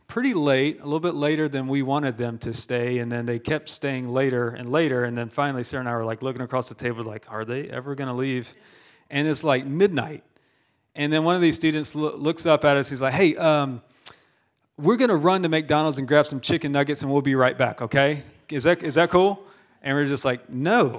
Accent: American